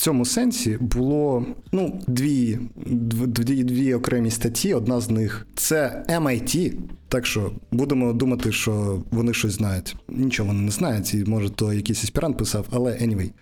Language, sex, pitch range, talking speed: Ukrainian, male, 115-150 Hz, 160 wpm